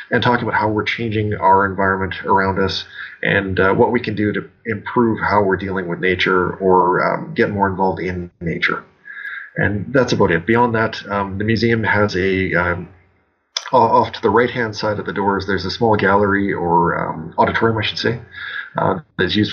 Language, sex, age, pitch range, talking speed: English, male, 30-49, 90-105 Hz, 195 wpm